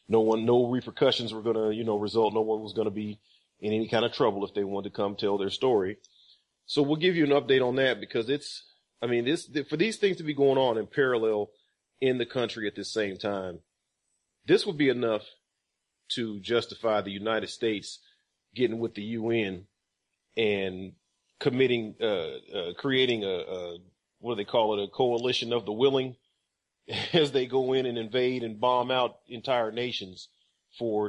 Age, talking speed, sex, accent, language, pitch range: 40-59, 195 wpm, male, American, English, 105-130 Hz